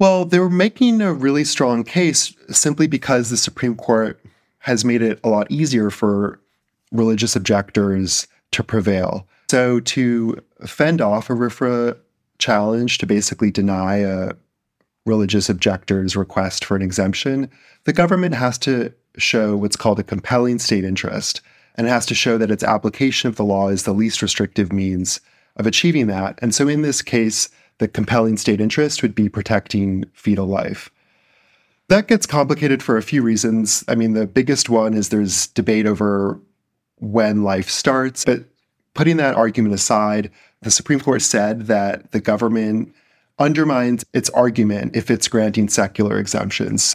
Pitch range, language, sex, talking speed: 105-125 Hz, English, male, 155 wpm